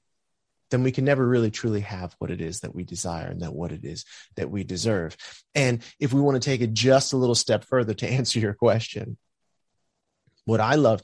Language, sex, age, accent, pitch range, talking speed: English, male, 30-49, American, 110-140 Hz, 215 wpm